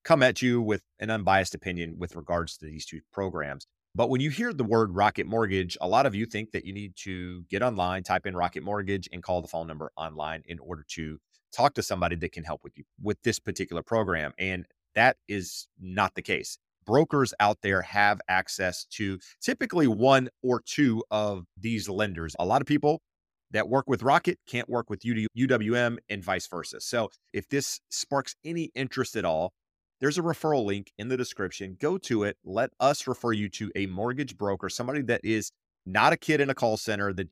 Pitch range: 90-120 Hz